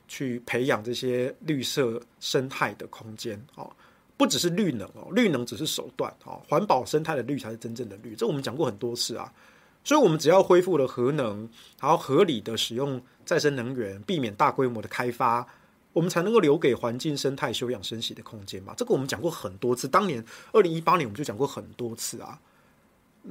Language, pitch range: Chinese, 125-200 Hz